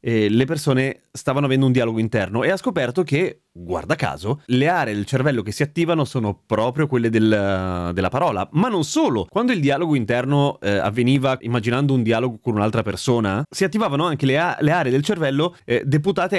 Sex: male